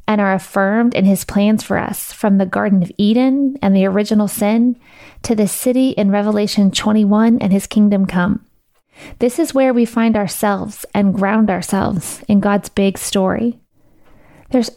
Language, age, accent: English, 30-49, American